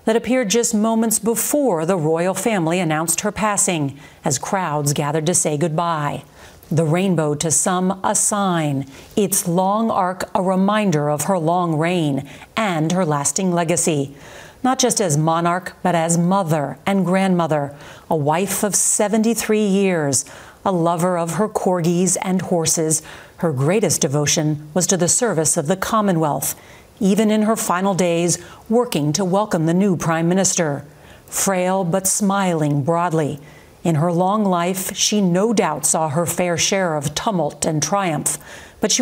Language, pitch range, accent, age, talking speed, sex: English, 160-200 Hz, American, 40-59, 155 wpm, female